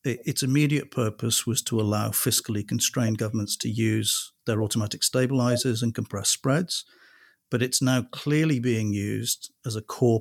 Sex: male